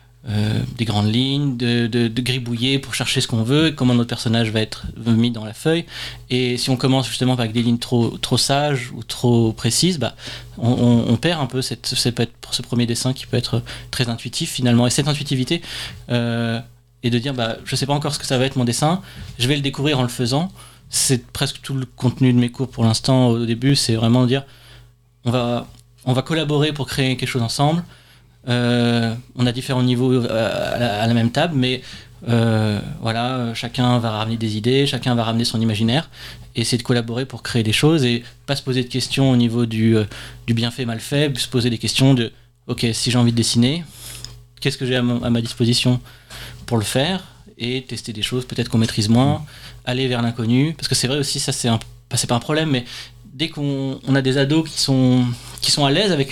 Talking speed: 225 wpm